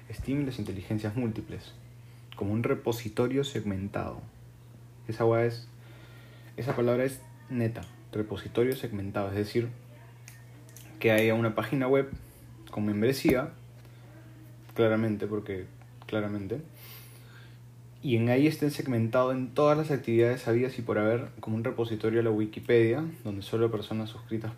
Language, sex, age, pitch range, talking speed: Spanish, male, 30-49, 110-120 Hz, 125 wpm